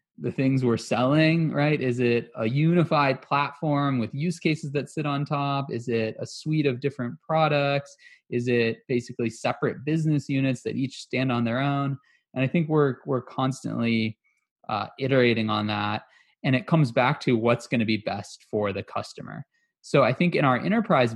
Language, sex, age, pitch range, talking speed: English, male, 20-39, 105-135 Hz, 185 wpm